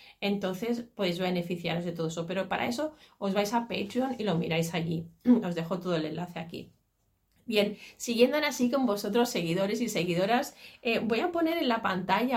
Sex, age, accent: female, 30-49, Spanish